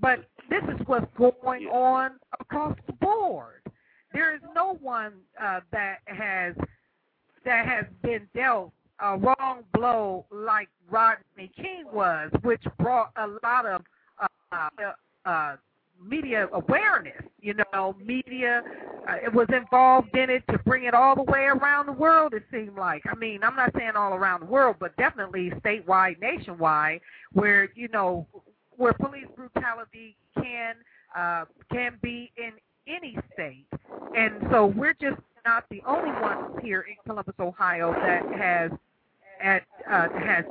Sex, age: female, 50-69